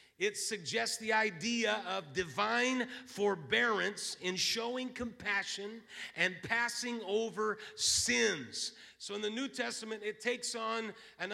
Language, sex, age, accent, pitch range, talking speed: English, male, 40-59, American, 210-250 Hz, 120 wpm